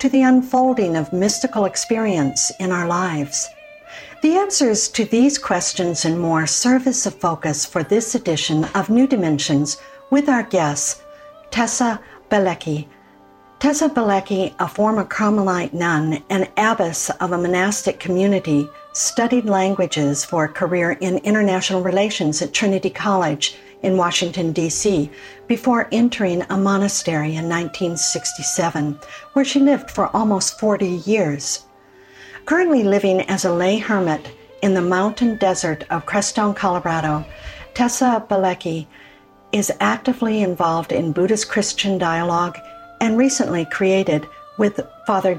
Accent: American